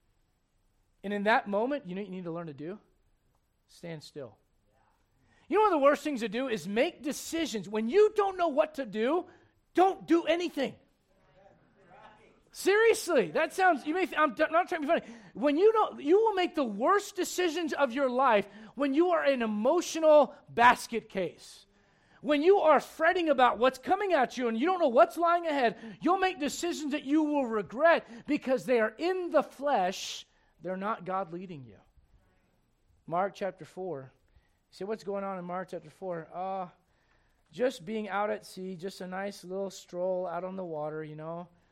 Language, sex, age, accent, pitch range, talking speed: English, male, 40-59, American, 185-290 Hz, 180 wpm